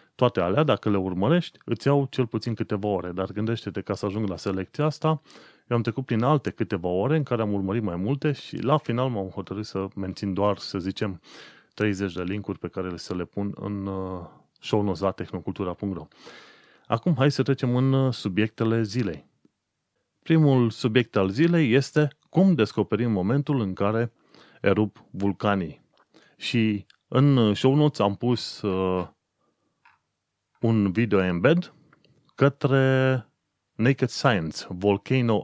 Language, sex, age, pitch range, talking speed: Romanian, male, 30-49, 100-130 Hz, 145 wpm